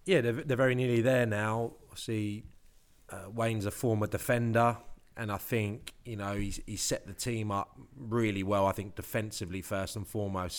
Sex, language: male, English